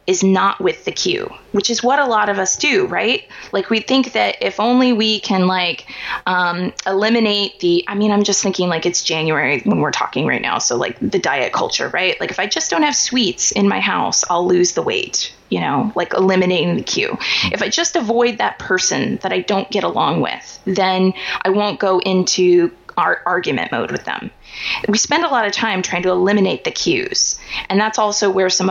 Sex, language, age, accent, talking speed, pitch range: female, English, 20-39, American, 215 wpm, 185-245 Hz